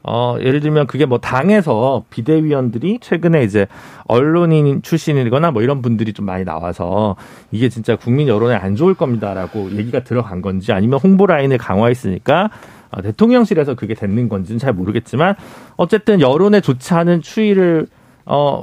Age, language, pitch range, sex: 40-59, Korean, 120-200 Hz, male